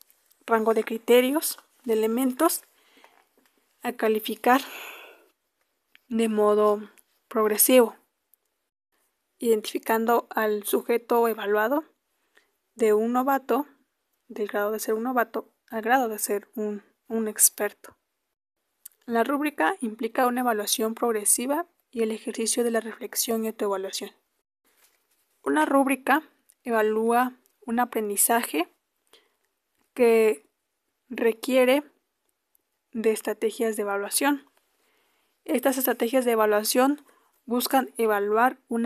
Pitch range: 220-265 Hz